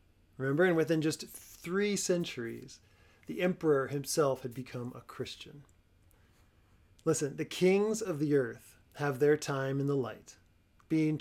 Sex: male